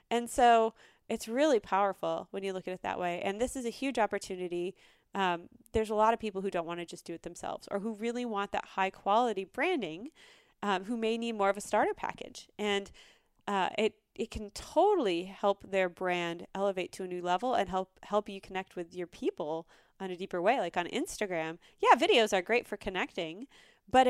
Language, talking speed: English, 210 wpm